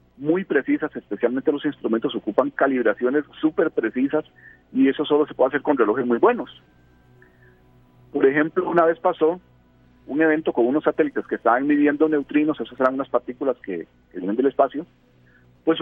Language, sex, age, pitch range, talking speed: Spanish, male, 40-59, 110-155 Hz, 165 wpm